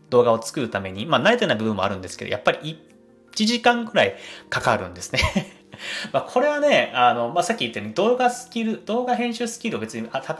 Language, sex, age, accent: Japanese, male, 30-49, native